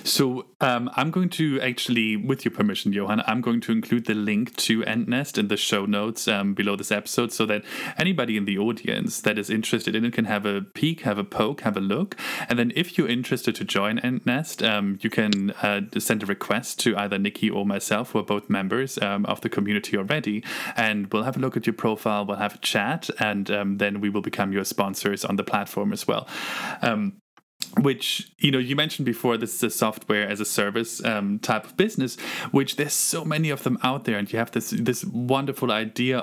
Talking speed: 220 wpm